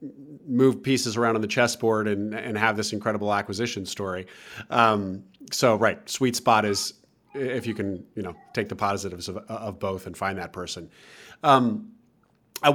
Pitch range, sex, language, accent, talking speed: 110-135 Hz, male, English, American, 170 wpm